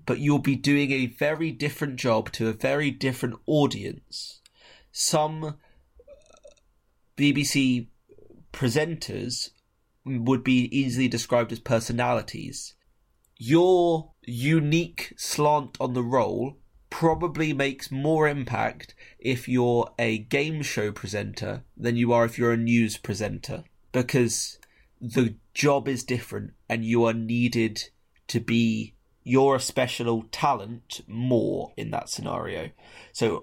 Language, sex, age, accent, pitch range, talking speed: English, male, 20-39, British, 115-140 Hz, 120 wpm